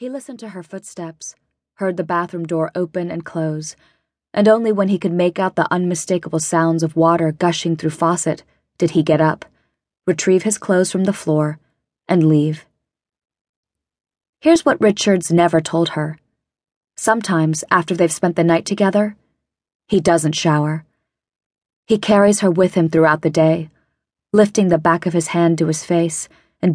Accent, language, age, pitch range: American, English, 20-39, 160-185 Hz